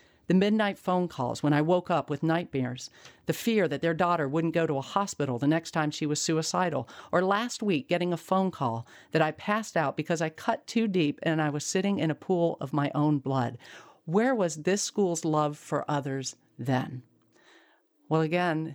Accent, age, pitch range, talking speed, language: American, 50-69, 145-180 Hz, 200 wpm, English